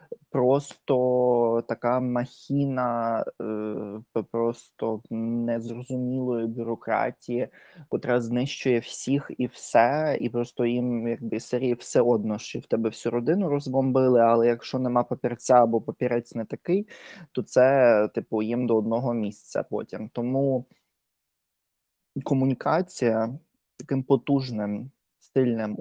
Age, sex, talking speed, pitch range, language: 20-39, male, 105 wpm, 115-135 Hz, Ukrainian